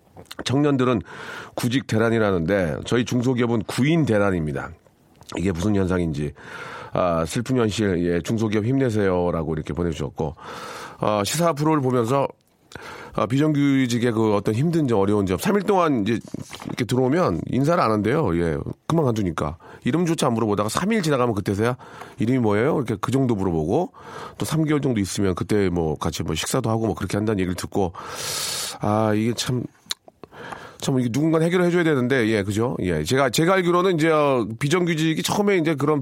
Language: Korean